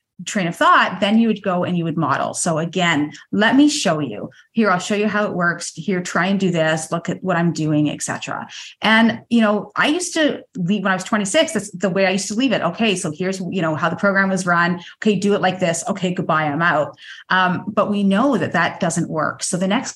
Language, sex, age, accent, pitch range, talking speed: English, female, 30-49, American, 165-200 Hz, 255 wpm